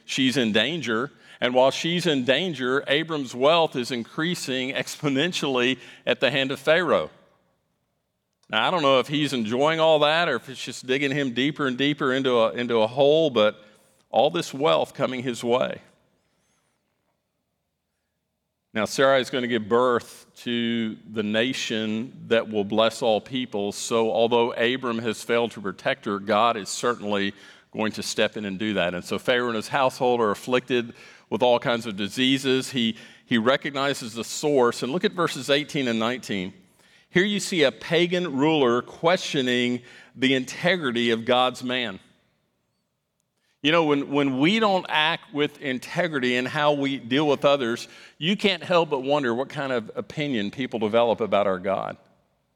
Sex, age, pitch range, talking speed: male, 50-69, 115-145 Hz, 165 wpm